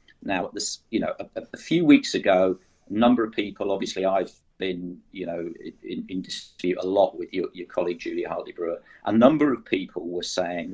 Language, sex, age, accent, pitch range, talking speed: English, male, 50-69, British, 95-120 Hz, 190 wpm